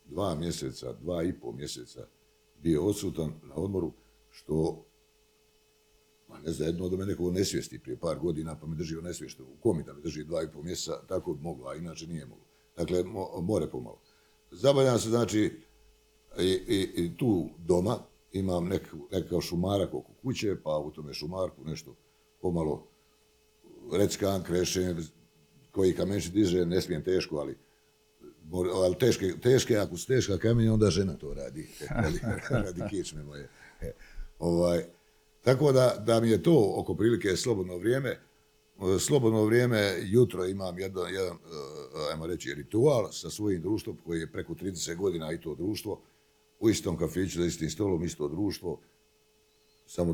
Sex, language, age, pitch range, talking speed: male, Croatian, 60-79, 85-100 Hz, 150 wpm